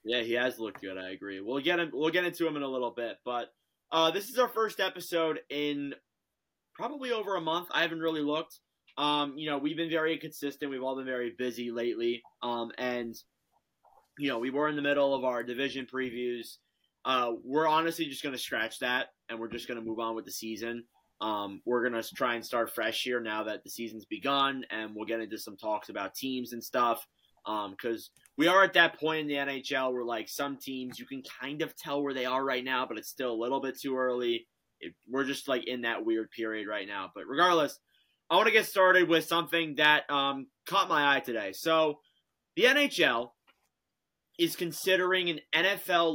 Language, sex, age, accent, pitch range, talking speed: English, male, 20-39, American, 120-155 Hz, 215 wpm